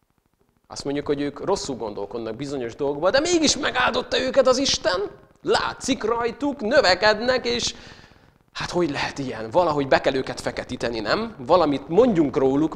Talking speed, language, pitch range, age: 145 wpm, Hungarian, 115-150 Hz, 30-49